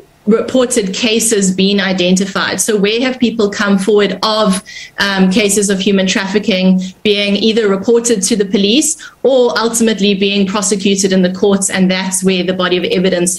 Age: 20-39